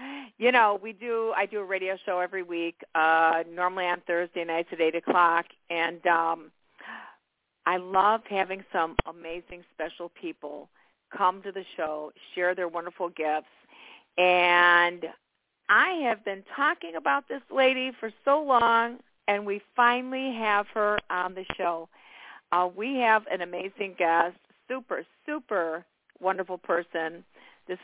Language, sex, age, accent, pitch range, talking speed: English, female, 50-69, American, 175-215 Hz, 145 wpm